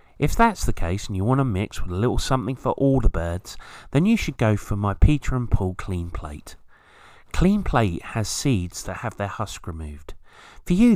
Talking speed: 215 wpm